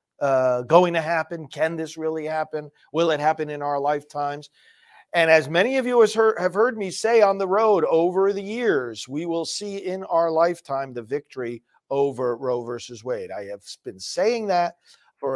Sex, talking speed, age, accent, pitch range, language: male, 185 wpm, 40-59, American, 130-165 Hz, English